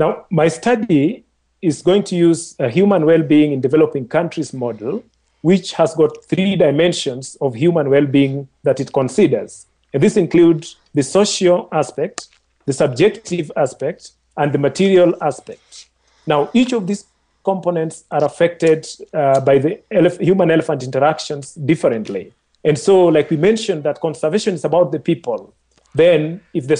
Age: 40-59